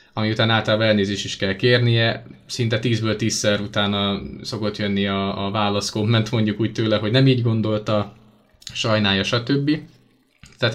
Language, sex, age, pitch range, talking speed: Hungarian, male, 20-39, 110-130 Hz, 145 wpm